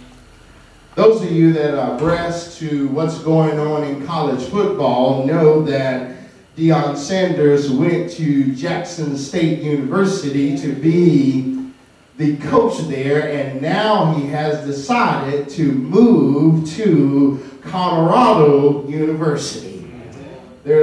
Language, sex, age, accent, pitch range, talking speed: English, male, 40-59, American, 155-210 Hz, 110 wpm